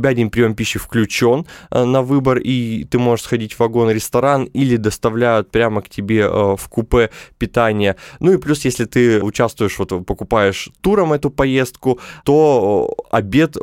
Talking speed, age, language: 145 wpm, 20-39, Russian